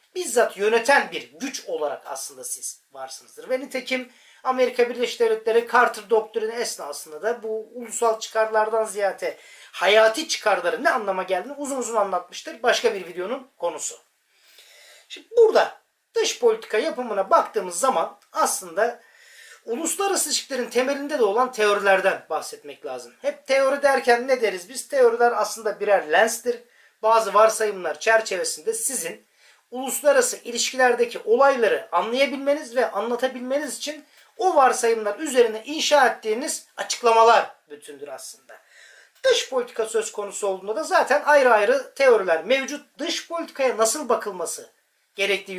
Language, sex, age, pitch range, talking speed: Turkish, male, 40-59, 220-295 Hz, 125 wpm